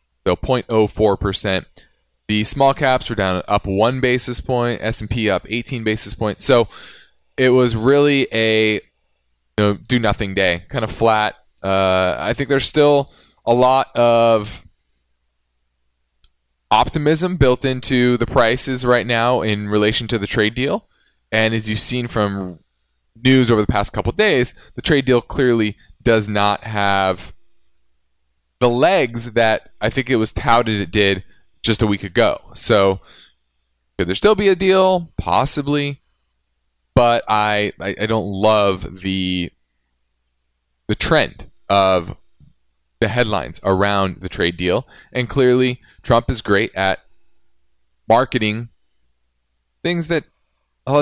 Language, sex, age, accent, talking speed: English, male, 20-39, American, 135 wpm